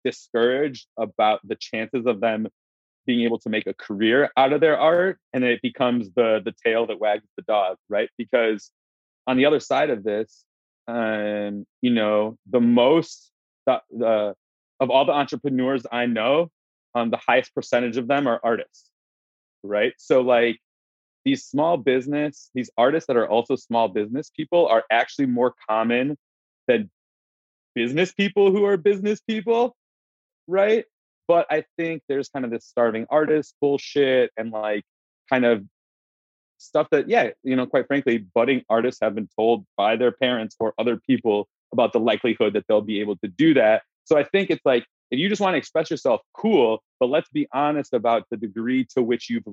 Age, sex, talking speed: 30-49, male, 180 wpm